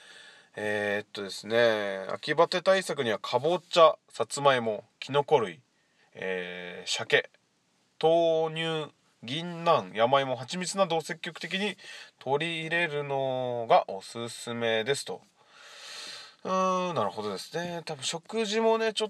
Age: 20-39